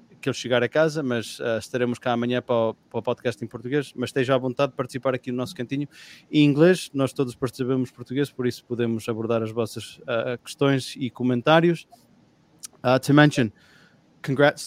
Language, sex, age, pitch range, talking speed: English, male, 20-39, 110-125 Hz, 185 wpm